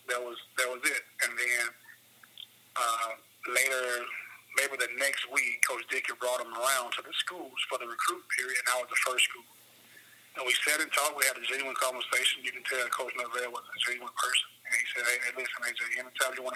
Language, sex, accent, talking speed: English, male, American, 215 wpm